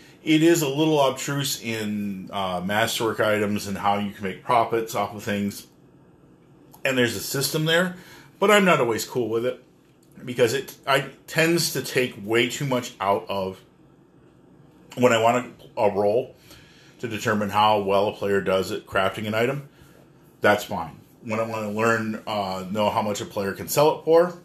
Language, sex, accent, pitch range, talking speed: English, male, American, 100-135 Hz, 185 wpm